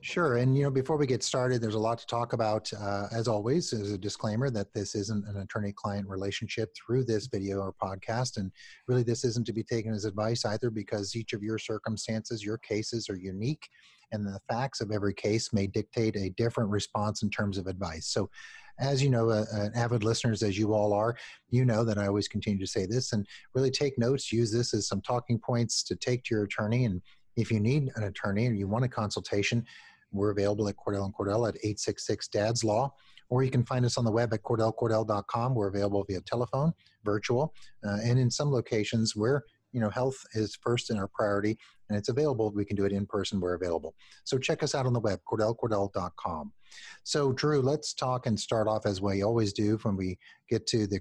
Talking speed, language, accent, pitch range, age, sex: 215 wpm, English, American, 105-120 Hz, 30-49, male